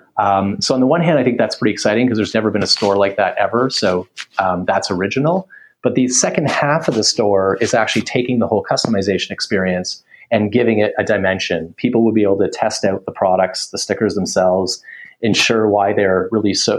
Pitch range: 95-110 Hz